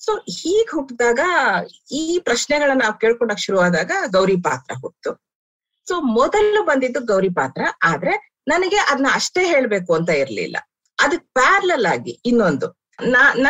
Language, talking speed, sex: Kannada, 130 wpm, female